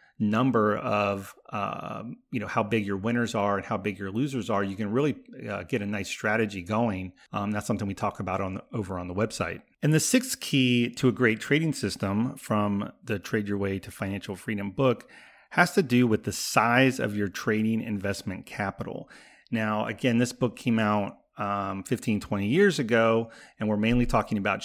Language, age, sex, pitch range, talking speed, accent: English, 30-49, male, 100-120 Hz, 200 wpm, American